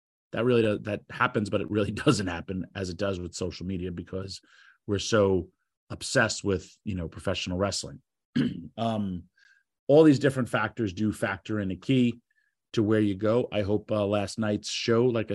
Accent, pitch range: American, 100-125 Hz